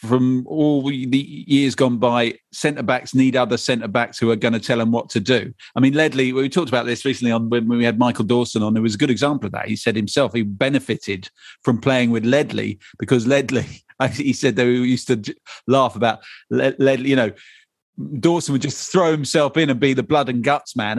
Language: English